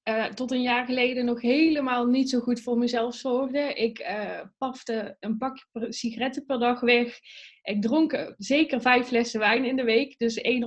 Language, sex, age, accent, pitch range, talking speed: Dutch, female, 20-39, Dutch, 230-265 Hz, 190 wpm